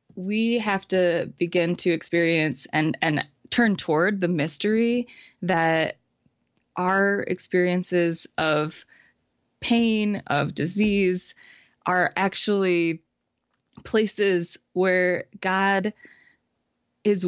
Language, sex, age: English, female, 20-39